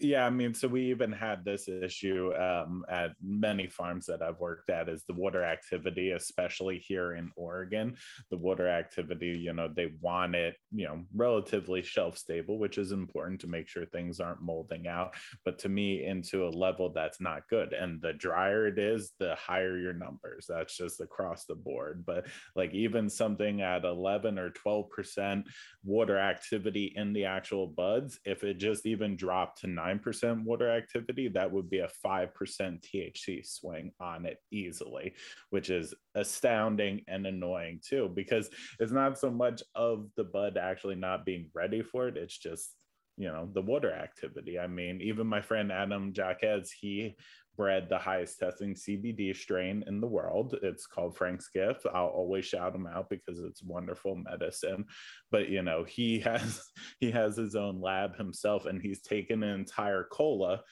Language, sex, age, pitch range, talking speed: English, male, 20-39, 90-105 Hz, 180 wpm